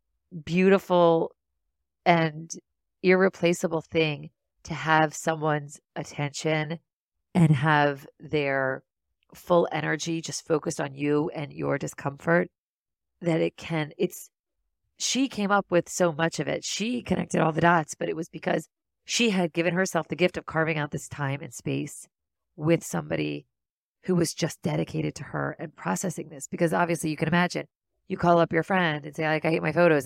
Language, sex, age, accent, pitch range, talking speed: English, female, 40-59, American, 150-180 Hz, 165 wpm